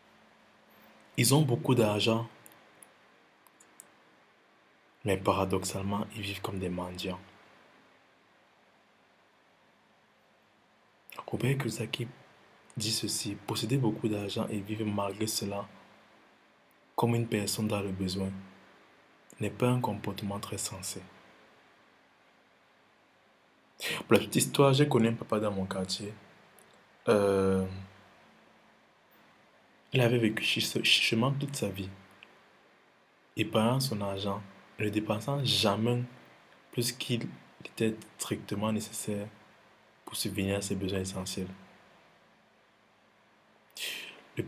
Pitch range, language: 100-115 Hz, French